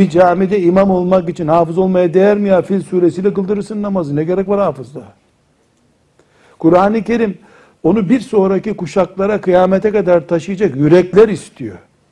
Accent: native